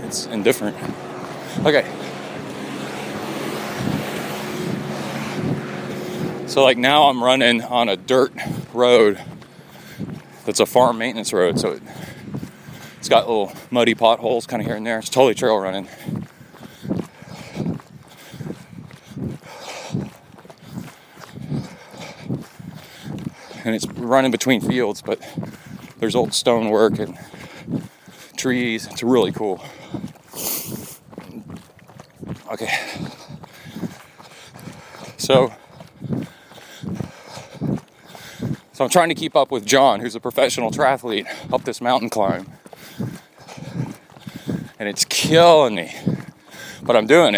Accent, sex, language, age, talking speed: American, male, English, 30-49, 90 wpm